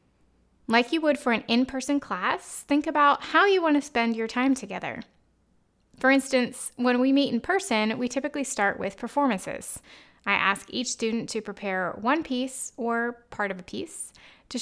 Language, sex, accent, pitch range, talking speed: English, female, American, 200-255 Hz, 170 wpm